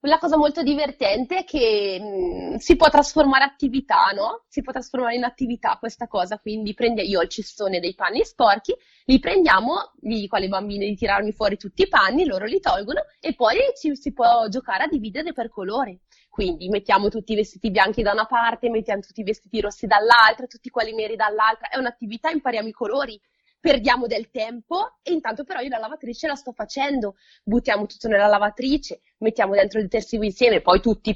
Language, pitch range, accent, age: Italian, 215-290 Hz, native, 20-39